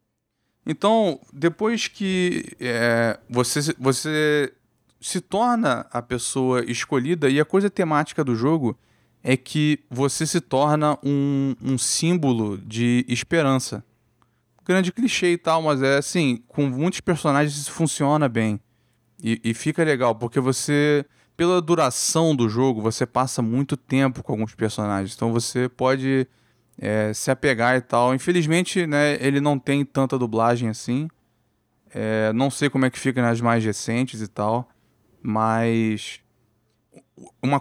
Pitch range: 120-155 Hz